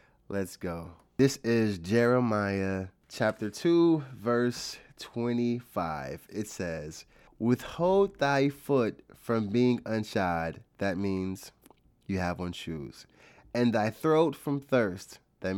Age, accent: 30-49, American